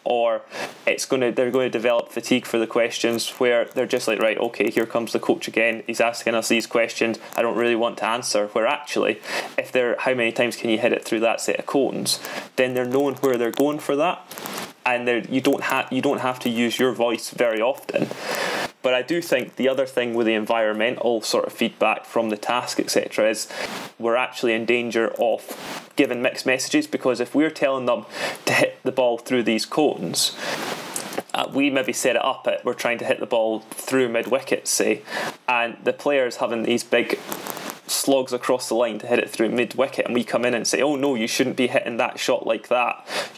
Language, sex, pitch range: English, male, 115-130 Hz